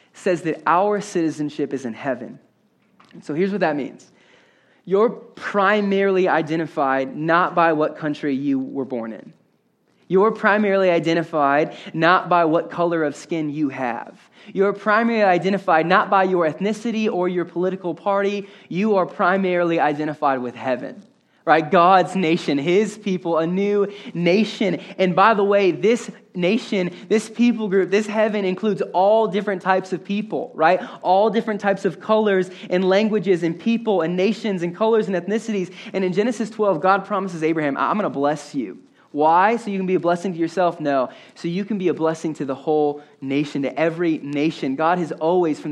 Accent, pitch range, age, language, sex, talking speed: American, 145-195 Hz, 20-39, English, male, 170 wpm